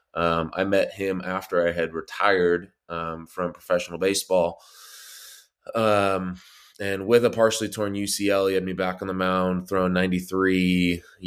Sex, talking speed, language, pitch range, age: male, 150 wpm, English, 85-100 Hz, 20-39